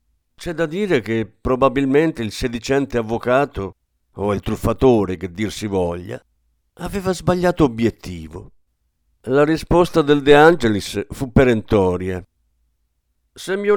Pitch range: 95-155 Hz